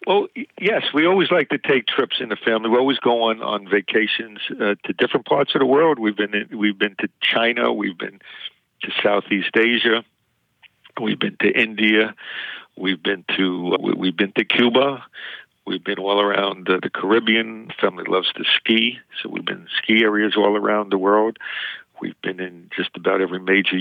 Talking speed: 195 wpm